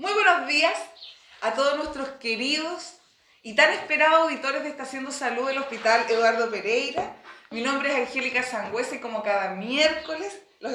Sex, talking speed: female, 160 wpm